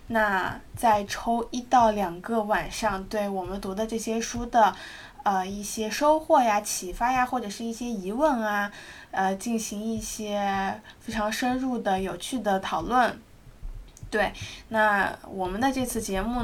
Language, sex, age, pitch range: Chinese, female, 20-39, 195-235 Hz